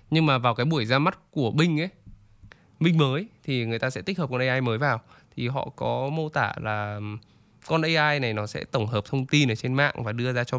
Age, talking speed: 20-39, 250 wpm